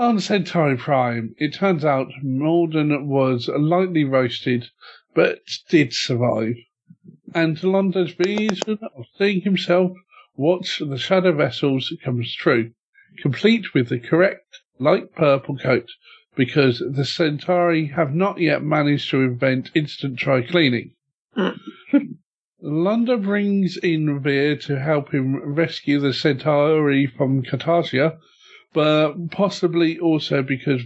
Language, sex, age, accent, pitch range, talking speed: English, male, 50-69, British, 135-175 Hz, 115 wpm